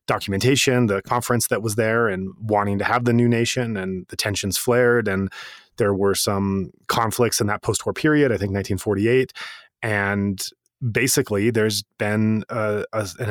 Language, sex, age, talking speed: English, male, 30-49, 155 wpm